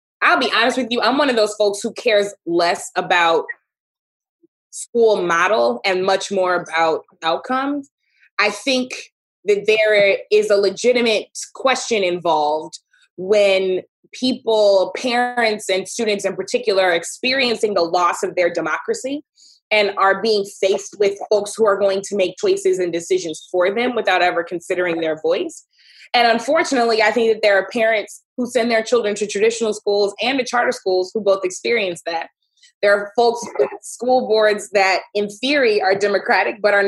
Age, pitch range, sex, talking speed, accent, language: 20-39, 190-245 Hz, female, 165 wpm, American, English